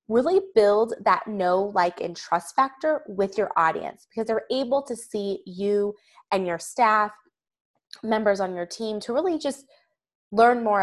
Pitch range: 190-245 Hz